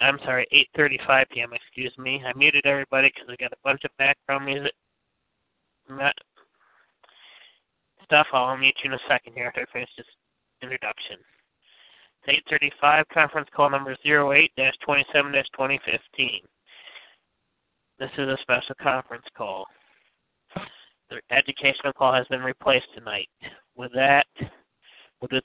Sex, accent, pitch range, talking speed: male, American, 130-145 Hz, 125 wpm